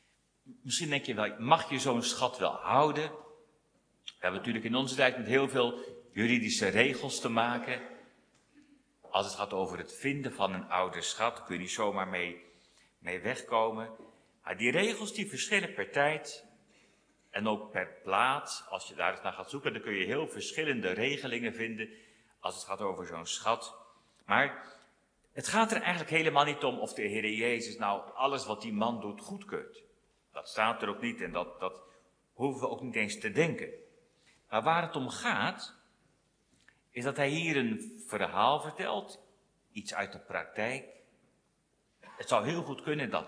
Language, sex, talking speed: Dutch, male, 175 wpm